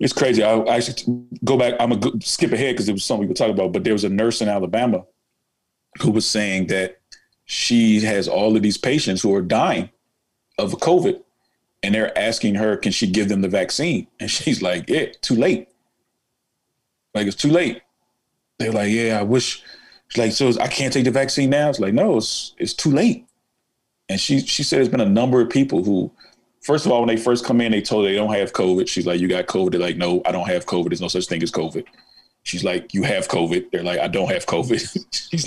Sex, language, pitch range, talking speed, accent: male, English, 100-130 Hz, 235 wpm, American